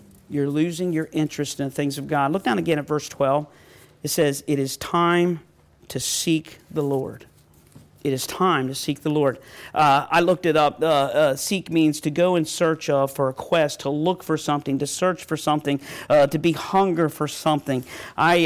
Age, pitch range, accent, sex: 40-59, 145-180 Hz, American, male